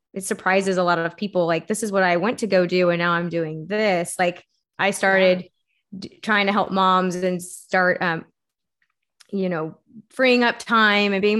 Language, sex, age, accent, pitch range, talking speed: English, female, 20-39, American, 180-215 Hz, 195 wpm